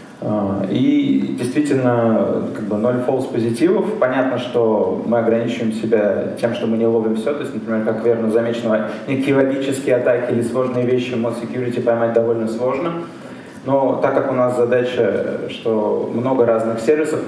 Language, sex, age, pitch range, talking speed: Russian, male, 20-39, 110-125 Hz, 155 wpm